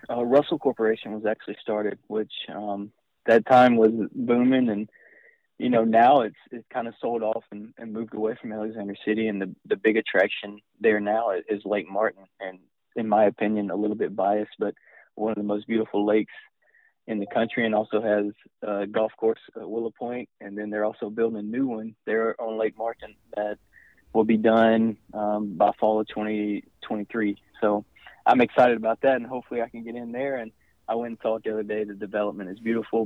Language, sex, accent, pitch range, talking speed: English, male, American, 105-115 Hz, 200 wpm